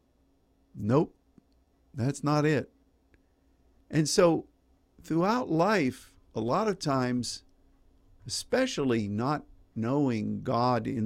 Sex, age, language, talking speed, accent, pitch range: male, 50-69, English, 90 wpm, American, 100-135 Hz